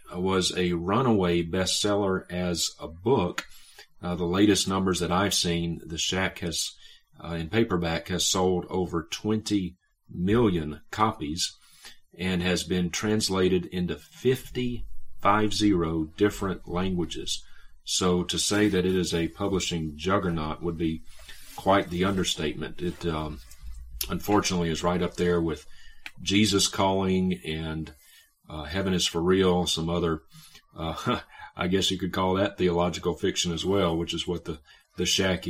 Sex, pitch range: male, 85-100 Hz